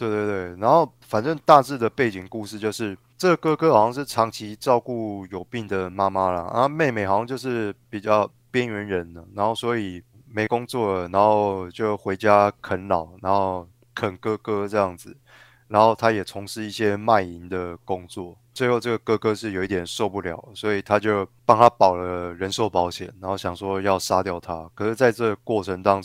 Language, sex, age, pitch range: Chinese, male, 20-39, 95-120 Hz